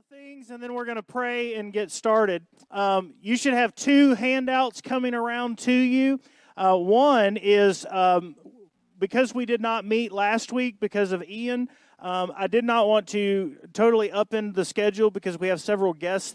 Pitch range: 170-220 Hz